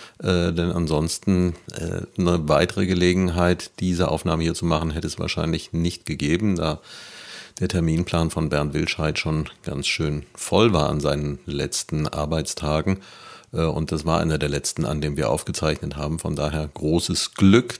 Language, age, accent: German, 40-59, German